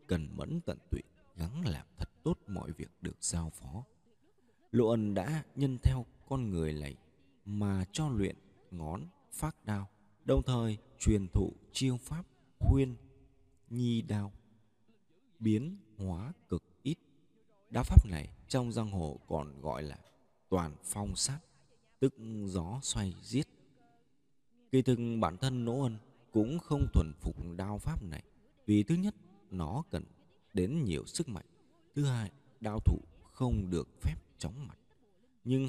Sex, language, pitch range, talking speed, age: male, Vietnamese, 90-135 Hz, 150 wpm, 20-39